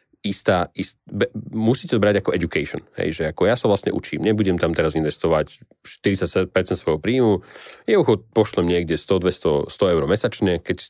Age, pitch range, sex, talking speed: 30-49, 90-110 Hz, male, 180 wpm